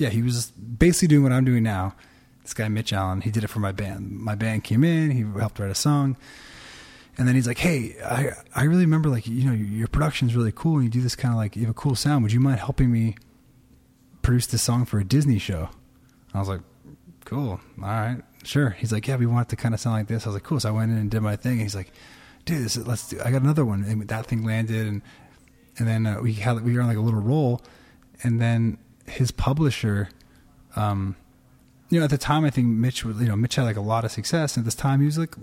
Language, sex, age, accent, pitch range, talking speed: English, male, 20-39, American, 105-130 Hz, 270 wpm